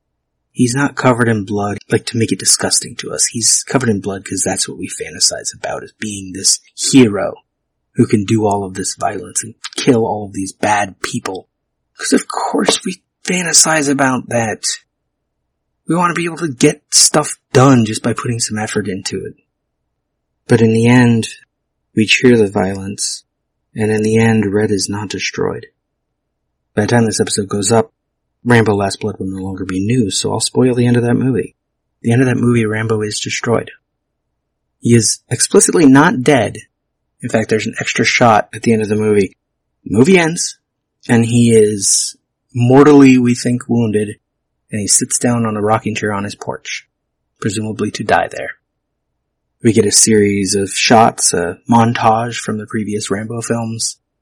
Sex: male